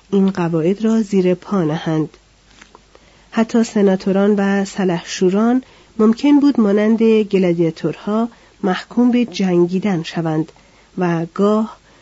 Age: 40-59